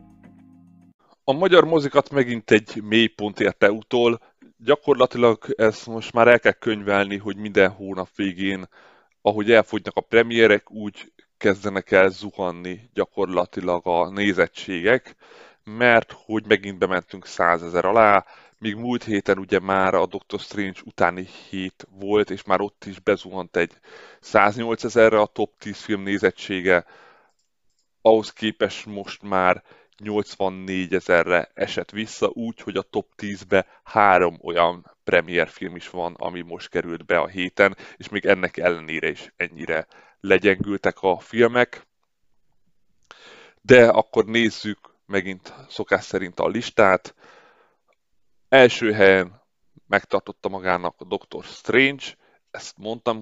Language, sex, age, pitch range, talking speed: Hungarian, male, 20-39, 95-115 Hz, 125 wpm